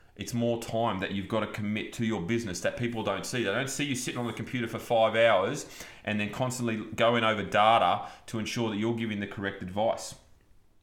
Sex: male